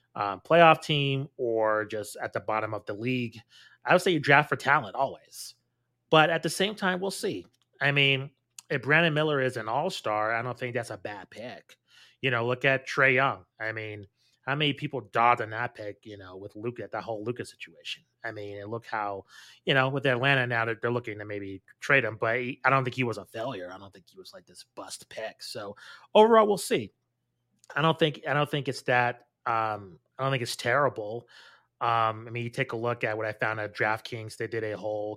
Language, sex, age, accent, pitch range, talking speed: English, male, 30-49, American, 110-135 Hz, 230 wpm